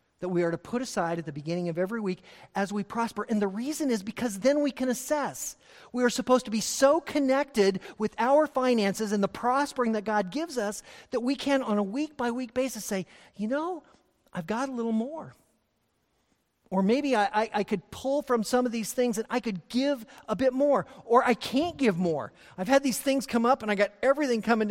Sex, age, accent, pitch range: male, 40-59, American, 180-255 Hz